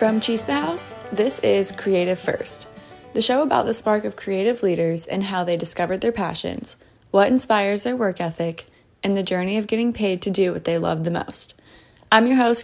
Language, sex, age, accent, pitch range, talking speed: English, female, 20-39, American, 175-215 Hz, 200 wpm